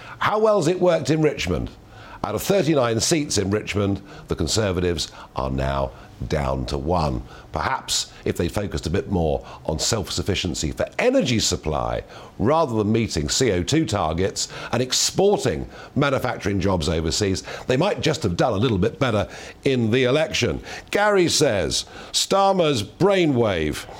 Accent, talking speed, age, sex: British, 145 wpm, 50-69, male